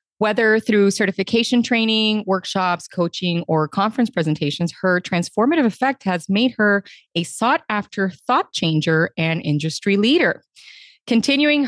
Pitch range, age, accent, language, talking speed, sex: 165-220 Hz, 30-49, American, English, 125 wpm, female